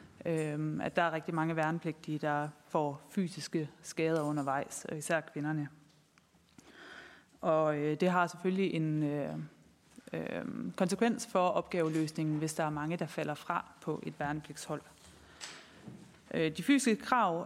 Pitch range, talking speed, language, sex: 160-200 Hz, 115 wpm, Danish, female